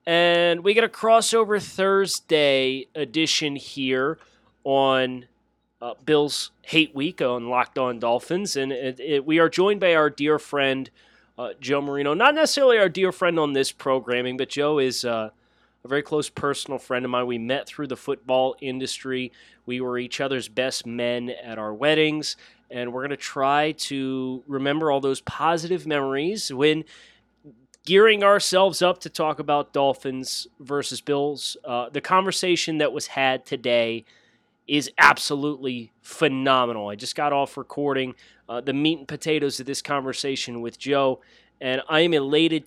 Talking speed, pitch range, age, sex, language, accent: 155 wpm, 130-160 Hz, 30-49, male, English, American